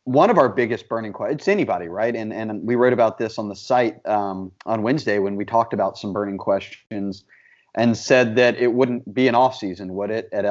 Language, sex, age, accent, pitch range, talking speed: English, male, 30-49, American, 105-125 Hz, 225 wpm